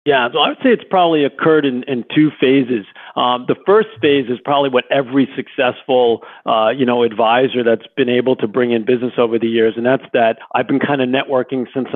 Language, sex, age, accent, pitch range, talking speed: English, male, 40-59, American, 115-140 Hz, 220 wpm